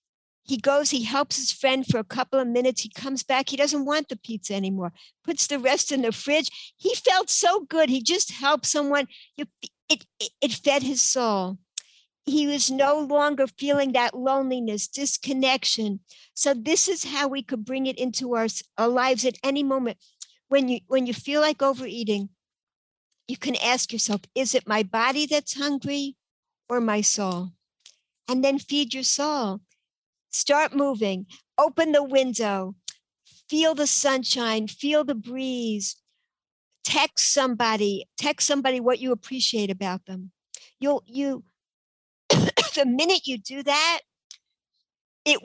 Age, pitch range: 60-79, 225-285 Hz